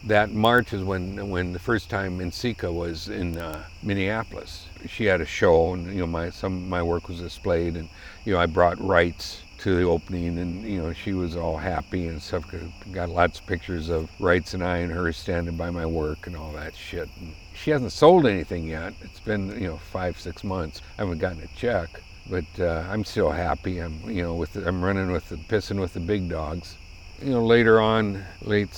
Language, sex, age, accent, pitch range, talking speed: English, male, 60-79, American, 85-110 Hz, 220 wpm